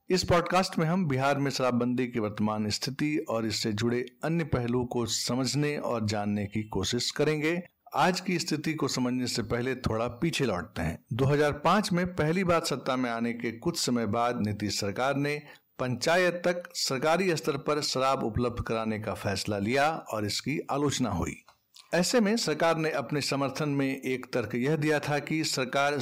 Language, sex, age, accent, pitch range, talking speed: Hindi, male, 60-79, native, 120-155 Hz, 175 wpm